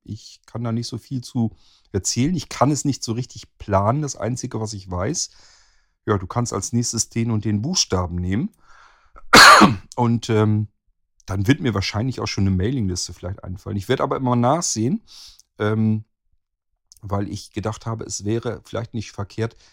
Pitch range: 90-115 Hz